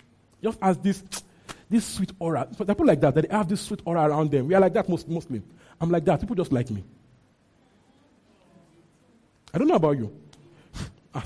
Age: 40-59